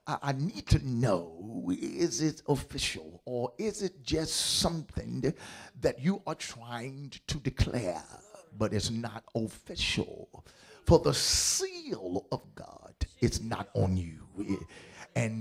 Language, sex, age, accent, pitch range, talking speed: English, male, 50-69, American, 110-150 Hz, 125 wpm